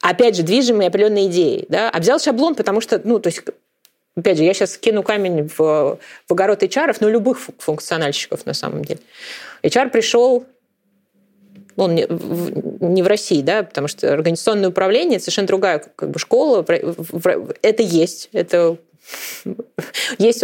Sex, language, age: female, Russian, 20-39